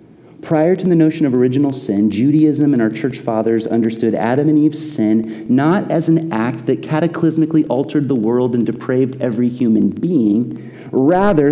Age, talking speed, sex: 30-49, 165 wpm, male